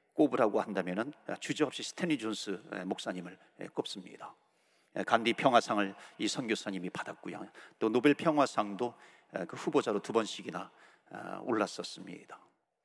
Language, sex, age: Korean, male, 40-59